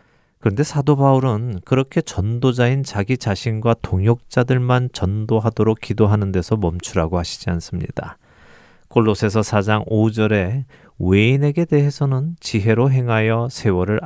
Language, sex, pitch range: Korean, male, 95-120 Hz